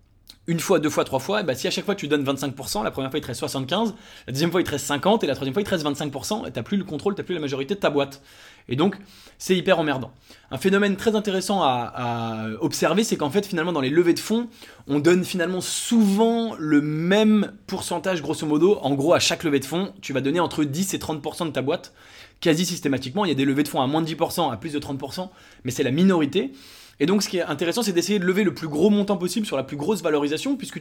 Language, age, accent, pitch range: English, 20-39, French, 140-190 Hz